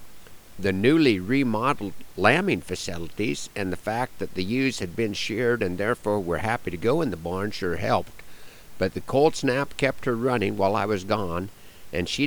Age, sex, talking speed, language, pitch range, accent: 50-69, male, 185 wpm, English, 95-130 Hz, American